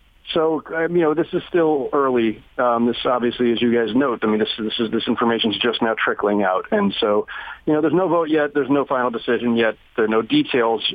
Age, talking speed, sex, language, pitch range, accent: 40-59, 225 wpm, male, English, 120-160 Hz, American